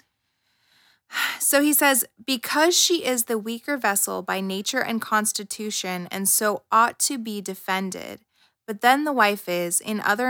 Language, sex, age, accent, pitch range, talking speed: English, female, 20-39, American, 190-235 Hz, 150 wpm